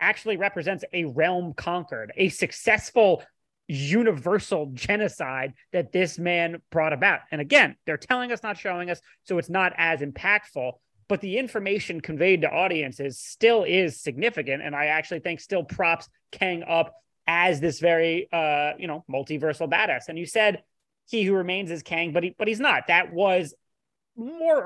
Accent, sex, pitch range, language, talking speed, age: American, male, 165-200 Hz, English, 165 wpm, 30-49